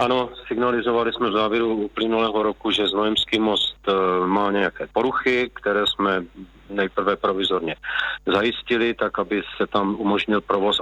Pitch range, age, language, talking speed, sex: 100-115 Hz, 40-59, Czech, 140 wpm, male